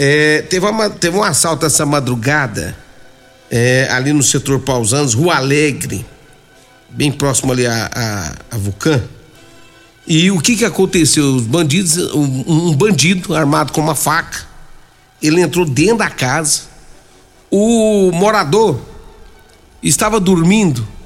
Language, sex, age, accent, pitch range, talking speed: Portuguese, male, 60-79, Brazilian, 140-215 Hz, 130 wpm